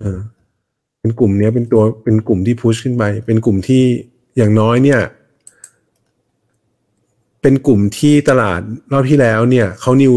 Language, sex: Thai, male